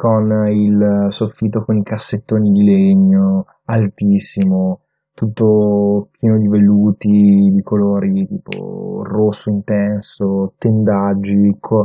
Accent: native